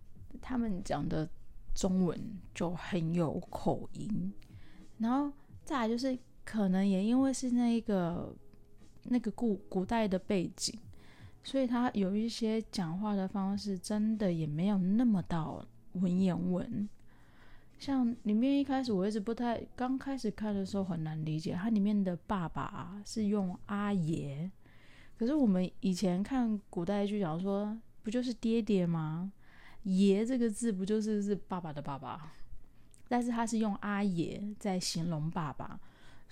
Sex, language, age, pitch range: female, Chinese, 20-39, 170-220 Hz